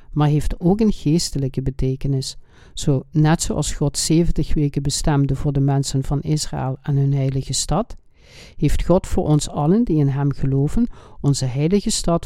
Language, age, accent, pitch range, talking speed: Dutch, 60-79, Dutch, 140-160 Hz, 165 wpm